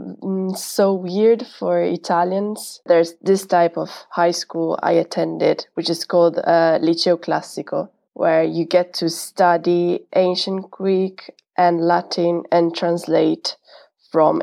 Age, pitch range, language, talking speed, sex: 20-39, 165-185 Hz, English, 125 wpm, female